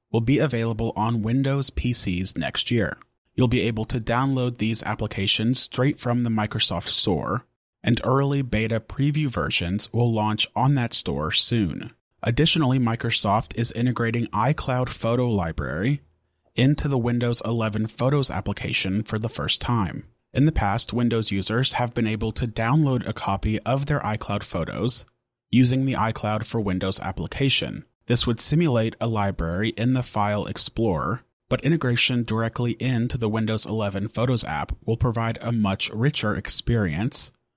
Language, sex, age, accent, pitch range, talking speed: English, male, 30-49, American, 105-125 Hz, 150 wpm